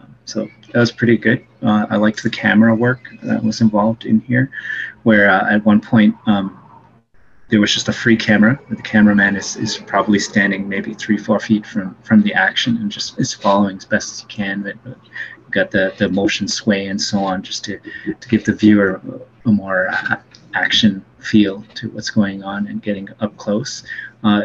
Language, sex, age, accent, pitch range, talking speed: English, male, 30-49, American, 100-110 Hz, 195 wpm